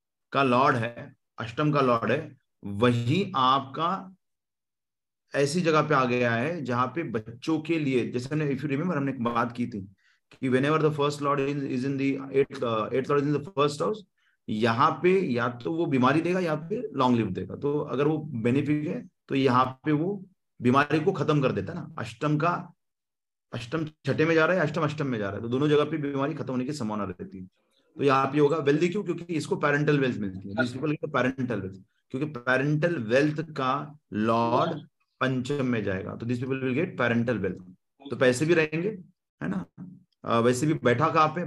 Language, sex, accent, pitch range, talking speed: Hindi, male, native, 125-155 Hz, 175 wpm